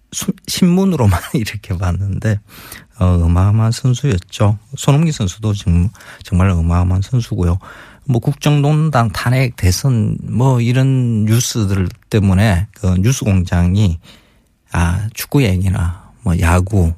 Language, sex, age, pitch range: Korean, male, 40-59, 95-130 Hz